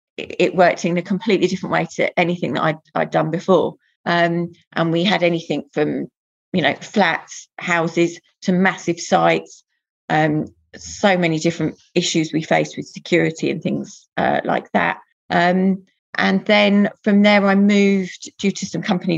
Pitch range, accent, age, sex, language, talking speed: 165-195 Hz, British, 30-49, female, English, 165 wpm